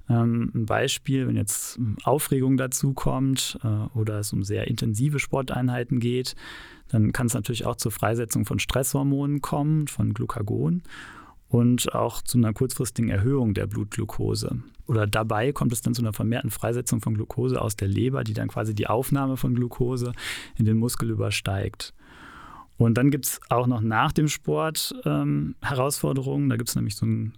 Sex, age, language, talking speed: male, 30-49, German, 165 wpm